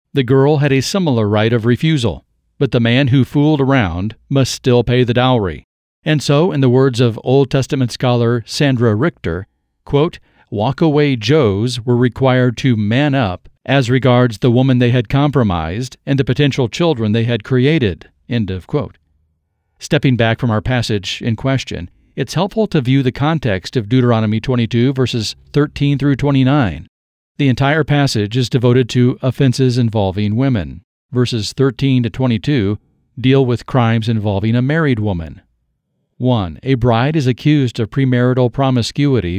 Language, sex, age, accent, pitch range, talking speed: English, male, 40-59, American, 110-135 Hz, 155 wpm